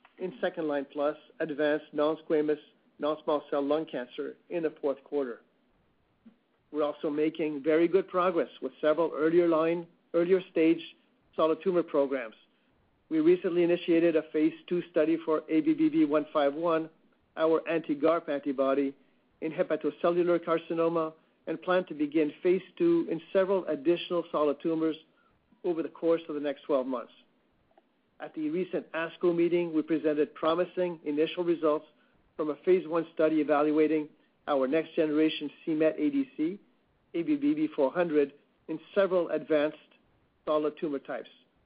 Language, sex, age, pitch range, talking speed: English, male, 50-69, 155-175 Hz, 135 wpm